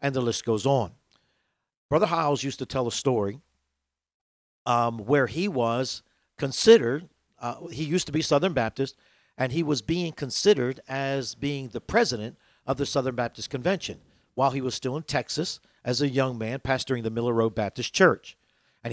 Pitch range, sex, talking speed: 120-155 Hz, male, 175 wpm